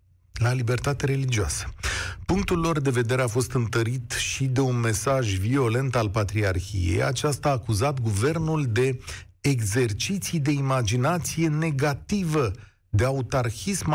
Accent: native